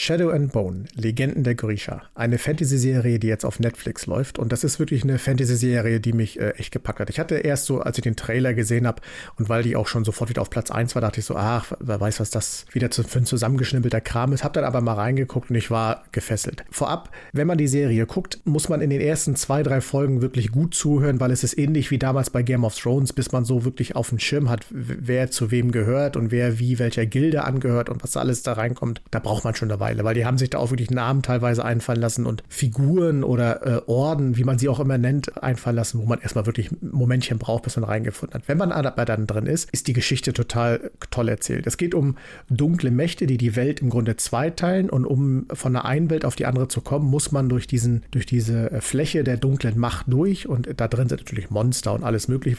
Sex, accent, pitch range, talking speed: male, German, 115-135 Hz, 245 wpm